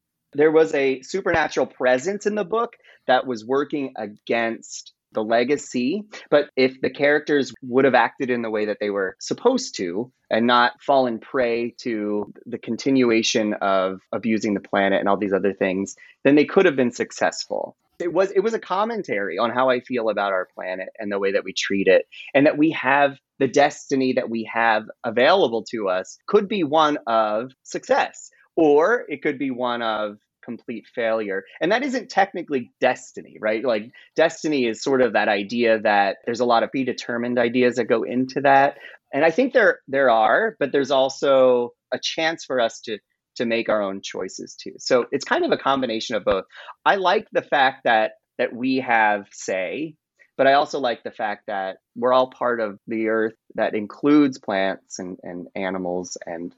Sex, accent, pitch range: male, American, 110-145 Hz